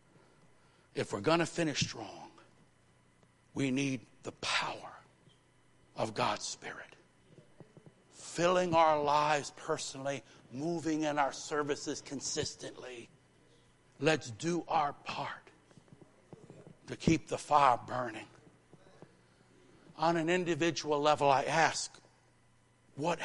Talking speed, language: 100 wpm, English